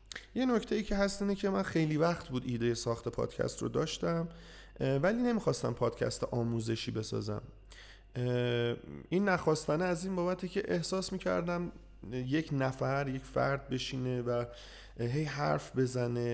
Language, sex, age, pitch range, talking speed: Persian, male, 30-49, 120-155 Hz, 135 wpm